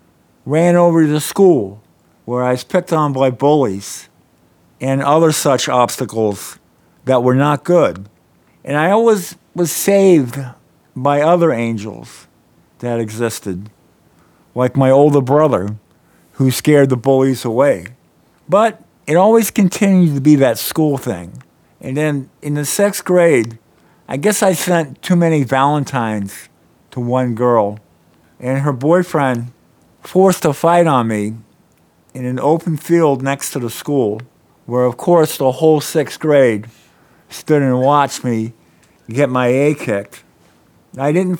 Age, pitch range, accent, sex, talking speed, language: 50-69, 115-155 Hz, American, male, 140 wpm, English